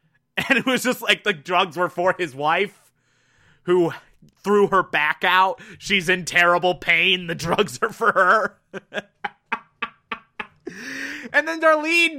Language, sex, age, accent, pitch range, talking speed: English, male, 20-39, American, 145-200 Hz, 140 wpm